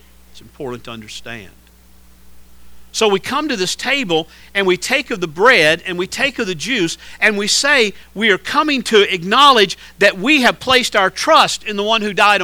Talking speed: 195 wpm